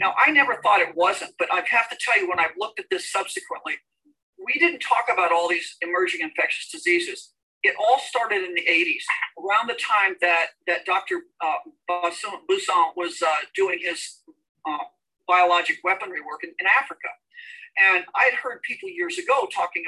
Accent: American